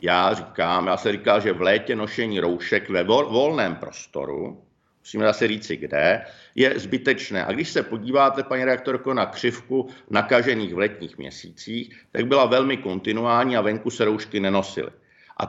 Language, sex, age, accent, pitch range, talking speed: Czech, male, 50-69, native, 110-130 Hz, 160 wpm